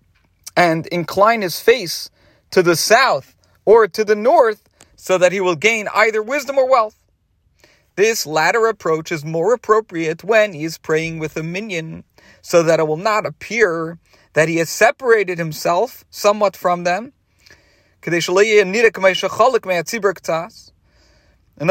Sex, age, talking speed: male, 40-59, 135 wpm